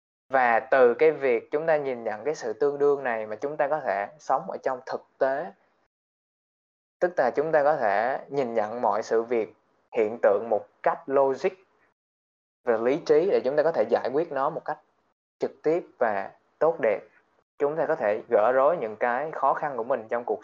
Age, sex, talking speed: 20-39, male, 210 wpm